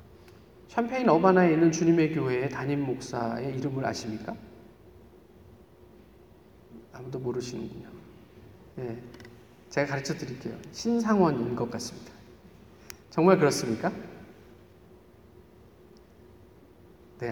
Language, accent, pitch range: Korean, native, 120-165 Hz